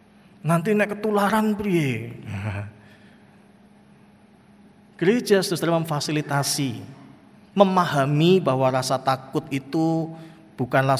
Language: Indonesian